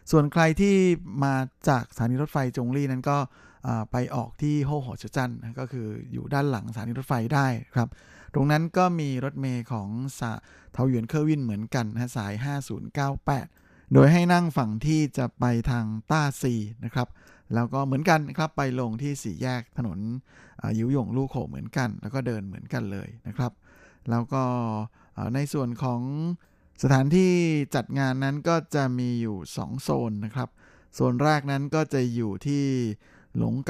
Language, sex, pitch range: Thai, male, 115-140 Hz